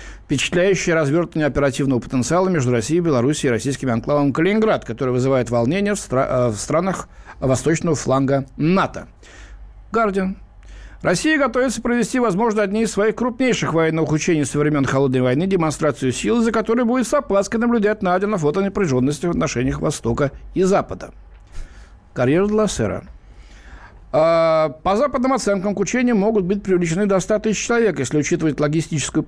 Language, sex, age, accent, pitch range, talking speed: Russian, male, 60-79, native, 135-210 Hz, 140 wpm